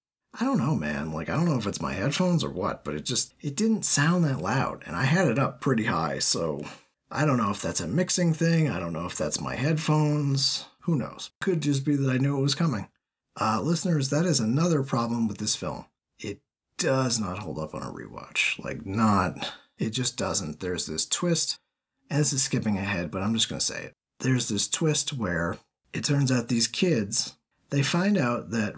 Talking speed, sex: 220 wpm, male